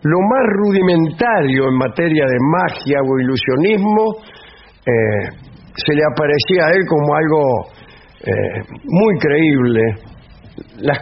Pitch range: 130-185 Hz